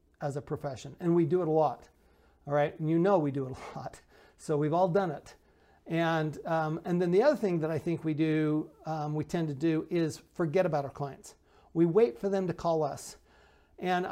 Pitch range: 160-190 Hz